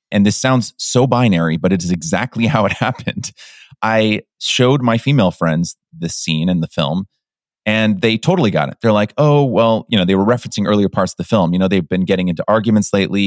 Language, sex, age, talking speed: English, male, 30-49, 220 wpm